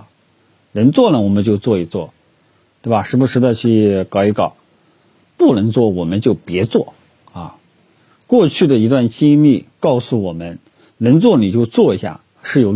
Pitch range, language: 105-125 Hz, Chinese